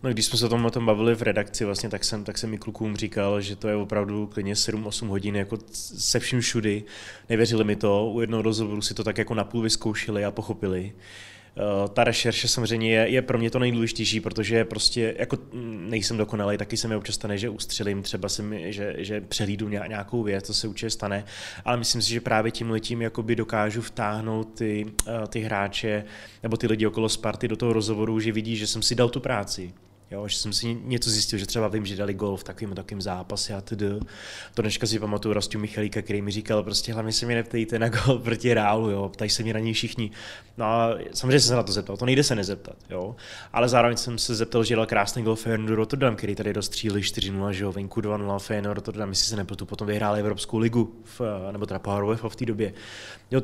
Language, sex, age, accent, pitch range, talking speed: Czech, male, 20-39, native, 105-115 Hz, 215 wpm